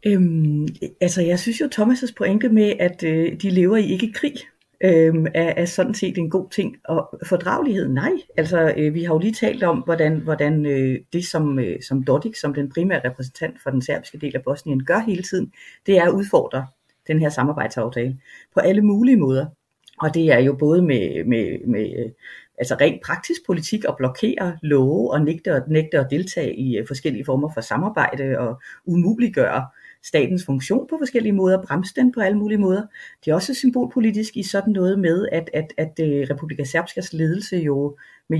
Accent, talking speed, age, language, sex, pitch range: native, 190 wpm, 30-49, Danish, female, 145-200 Hz